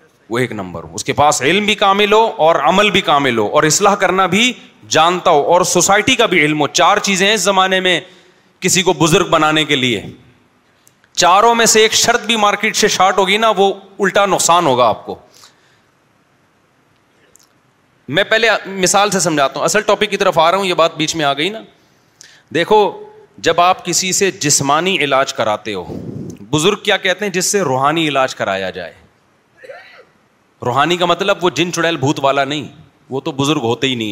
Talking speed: 195 wpm